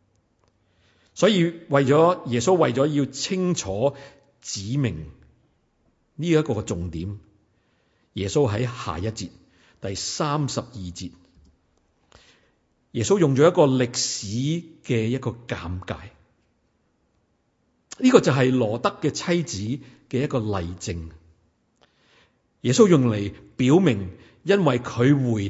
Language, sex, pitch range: Chinese, male, 100-150 Hz